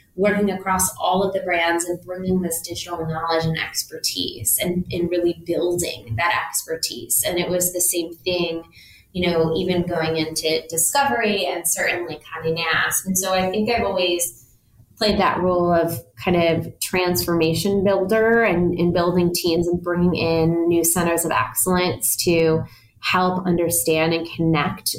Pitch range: 160-185 Hz